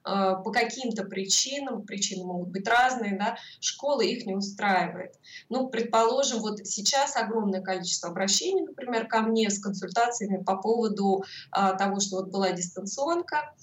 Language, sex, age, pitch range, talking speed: Russian, female, 20-39, 190-235 Hz, 140 wpm